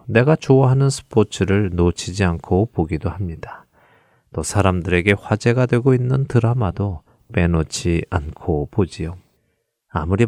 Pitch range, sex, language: 90-125 Hz, male, Korean